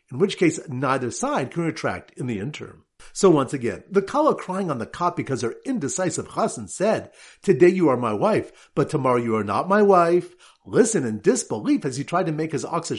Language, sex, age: English, male, 50-69